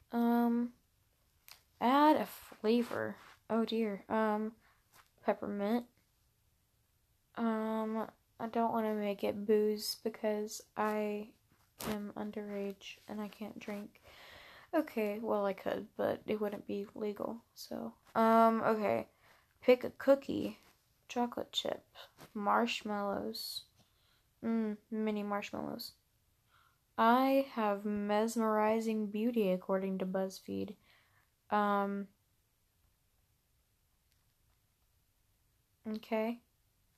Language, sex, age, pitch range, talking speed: English, female, 10-29, 185-225 Hz, 90 wpm